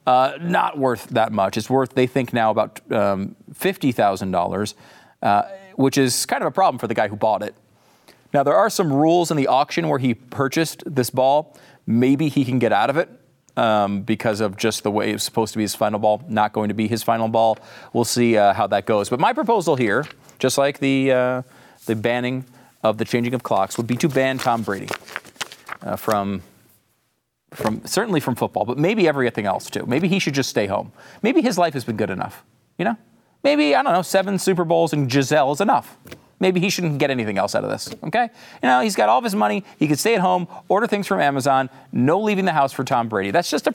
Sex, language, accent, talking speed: male, English, American, 230 wpm